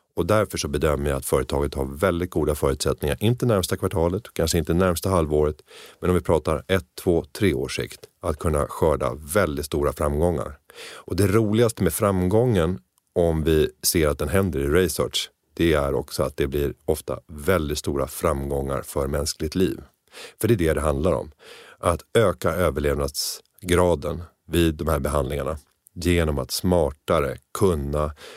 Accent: native